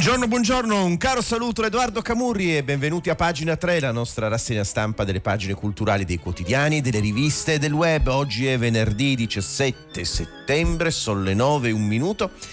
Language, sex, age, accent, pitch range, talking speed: Italian, male, 40-59, native, 95-145 Hz, 175 wpm